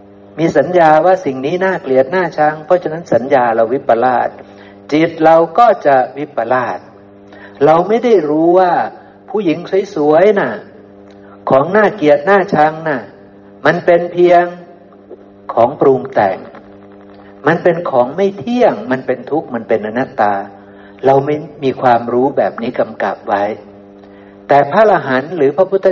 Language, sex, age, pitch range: Thai, male, 60-79, 100-170 Hz